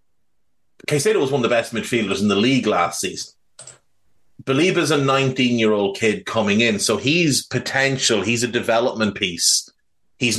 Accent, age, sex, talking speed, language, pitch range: Irish, 30-49, male, 155 wpm, English, 110-140 Hz